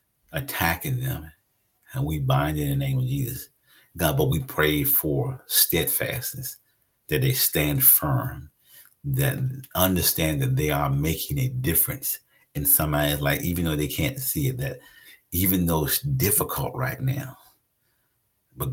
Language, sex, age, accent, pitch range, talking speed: English, male, 50-69, American, 105-140 Hz, 145 wpm